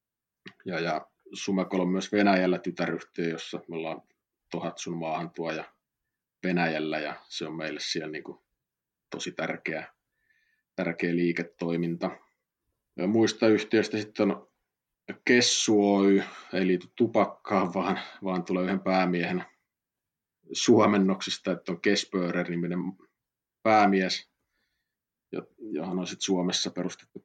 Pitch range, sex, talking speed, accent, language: 90-110 Hz, male, 110 wpm, native, Finnish